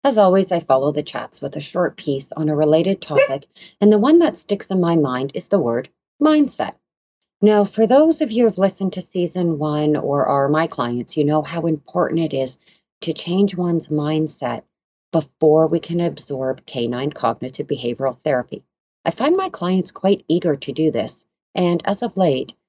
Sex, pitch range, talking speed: female, 140-180 Hz, 190 wpm